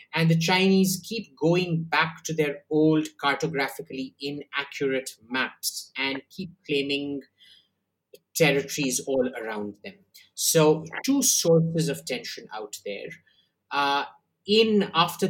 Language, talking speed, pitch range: English, 115 wpm, 135-170 Hz